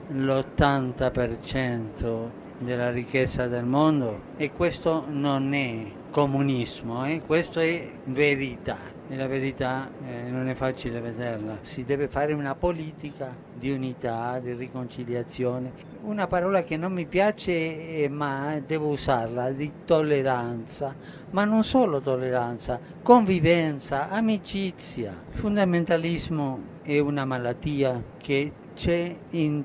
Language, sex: Italian, male